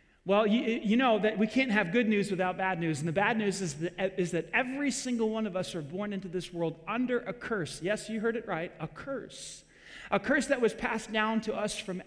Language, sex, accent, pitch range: English, male, American, 160-220 Hz